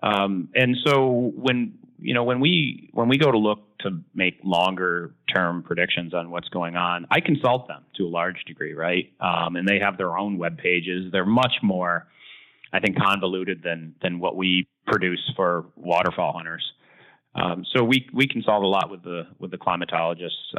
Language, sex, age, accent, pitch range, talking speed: English, male, 30-49, American, 85-115 Hz, 185 wpm